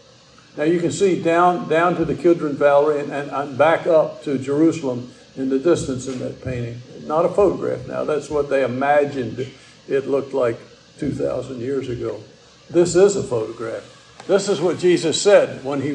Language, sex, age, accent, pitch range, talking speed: English, male, 60-79, American, 135-195 Hz, 175 wpm